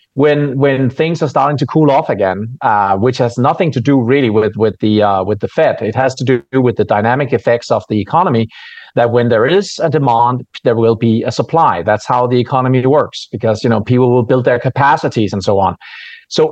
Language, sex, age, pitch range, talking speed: English, male, 40-59, 115-145 Hz, 225 wpm